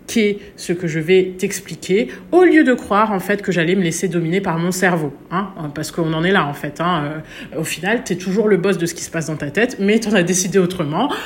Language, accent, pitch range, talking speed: French, French, 170-210 Hz, 265 wpm